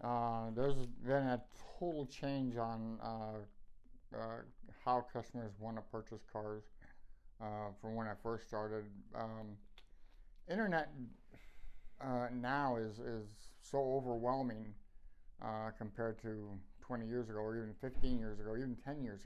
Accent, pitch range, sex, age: American, 110-125 Hz, male, 50-69